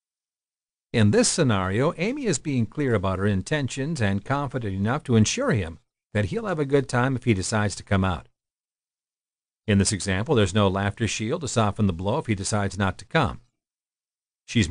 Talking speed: 190 wpm